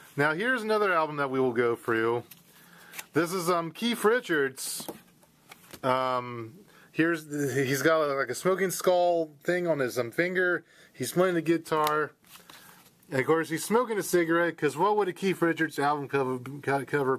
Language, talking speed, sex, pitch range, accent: English, 170 wpm, male, 140-180 Hz, American